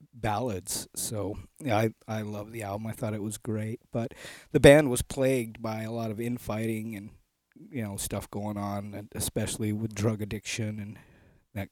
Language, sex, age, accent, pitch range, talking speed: English, male, 40-59, American, 110-130 Hz, 185 wpm